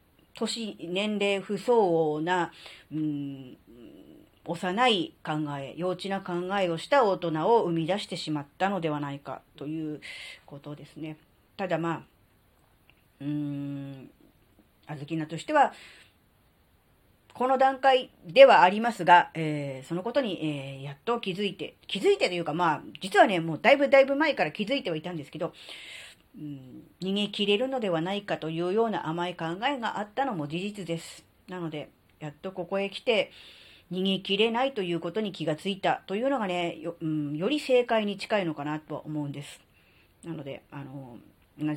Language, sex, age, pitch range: Japanese, female, 40-59, 150-200 Hz